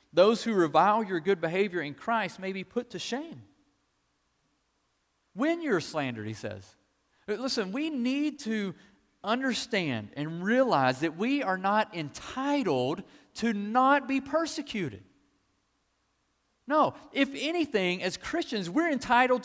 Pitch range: 185-255 Hz